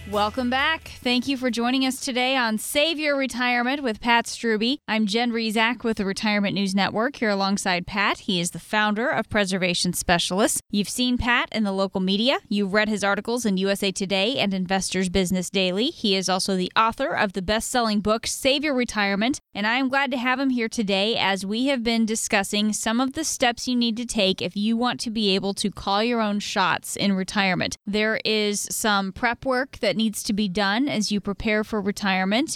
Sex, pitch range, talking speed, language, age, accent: female, 195-235 Hz, 210 wpm, English, 10-29, American